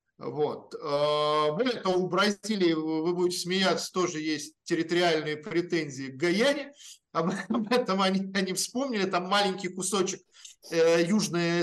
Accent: native